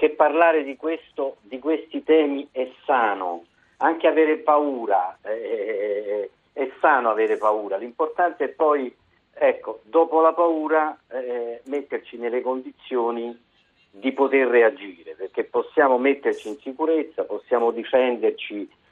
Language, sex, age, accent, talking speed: Italian, male, 50-69, native, 120 wpm